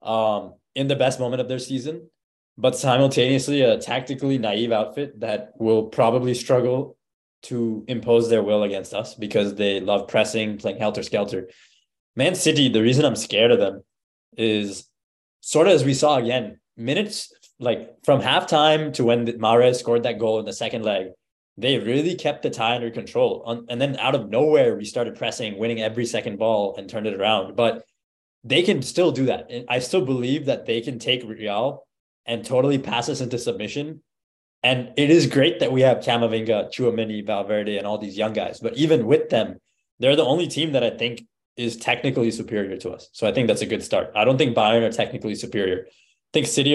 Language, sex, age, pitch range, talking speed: English, male, 20-39, 110-135 Hz, 195 wpm